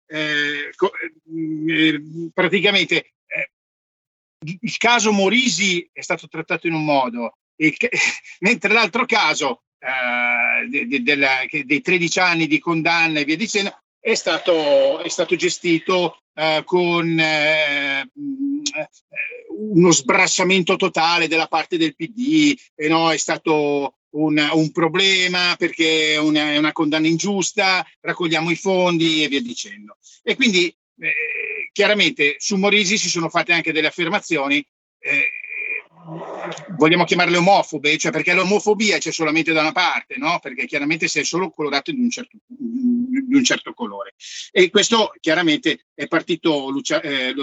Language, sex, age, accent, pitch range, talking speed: Italian, male, 50-69, native, 155-205 Hz, 140 wpm